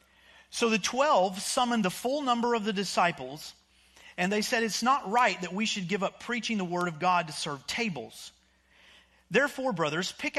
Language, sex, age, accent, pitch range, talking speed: English, male, 40-59, American, 150-225 Hz, 185 wpm